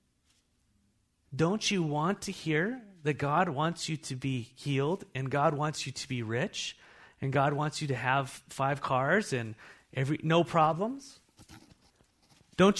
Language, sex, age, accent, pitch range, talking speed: English, male, 30-49, American, 155-225 Hz, 150 wpm